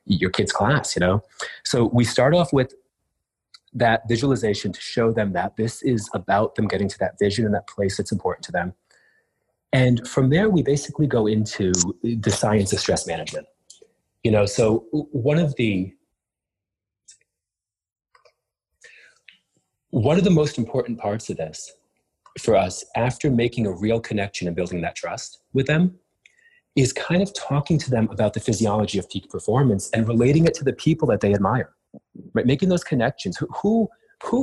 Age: 30-49